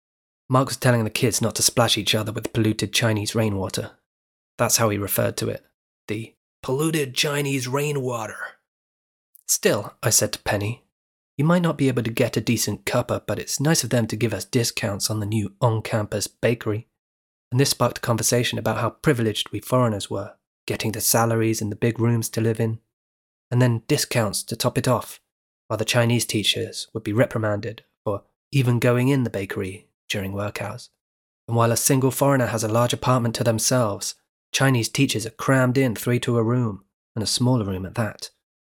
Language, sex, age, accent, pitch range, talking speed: English, male, 30-49, British, 110-125 Hz, 190 wpm